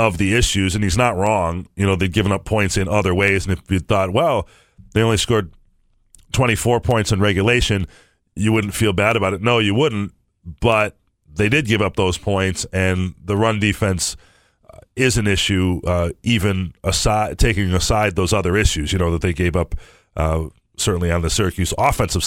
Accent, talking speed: American, 190 wpm